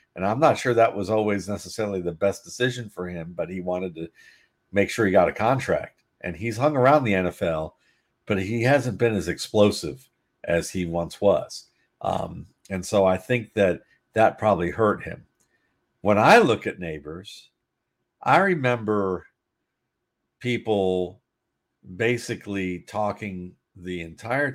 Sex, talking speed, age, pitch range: male, 150 wpm, 50-69, 90-120 Hz